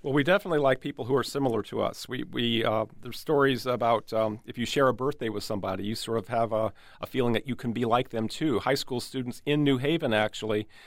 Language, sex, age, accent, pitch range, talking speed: English, male, 40-59, American, 115-145 Hz, 250 wpm